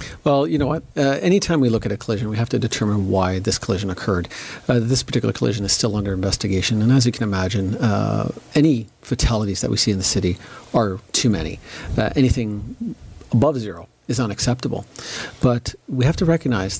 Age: 40-59